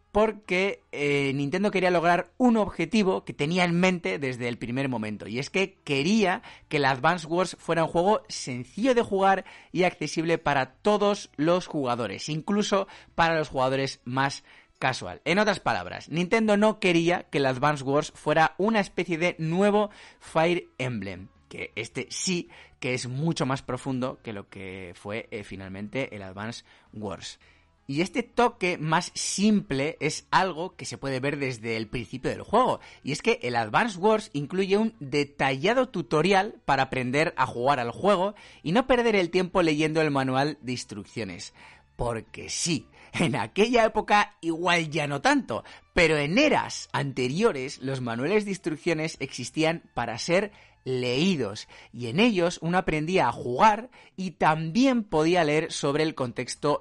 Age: 30-49